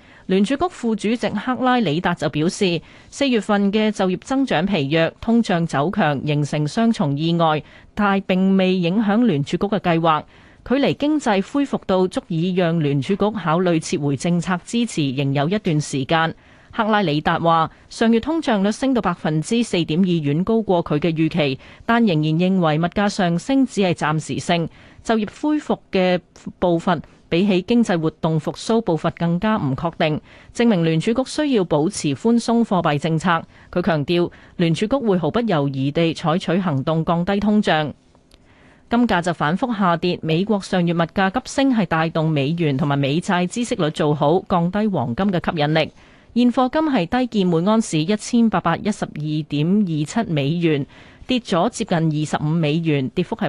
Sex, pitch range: female, 160-215 Hz